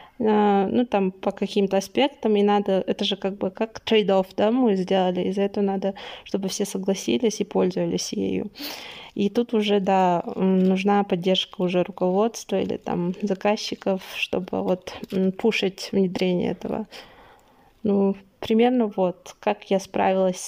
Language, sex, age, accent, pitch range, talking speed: Russian, female, 20-39, native, 190-220 Hz, 145 wpm